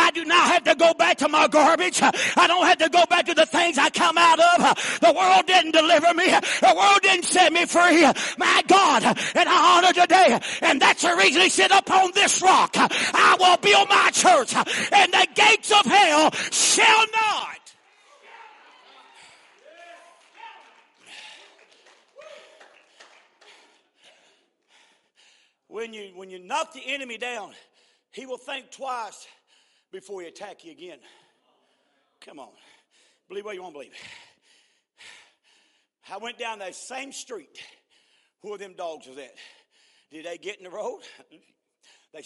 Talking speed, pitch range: 150 wpm, 270-415 Hz